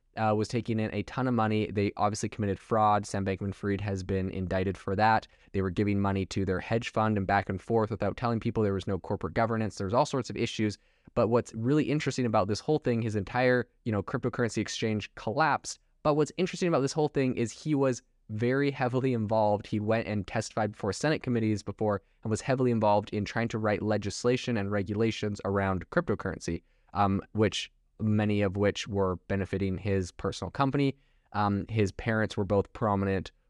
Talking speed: 195 wpm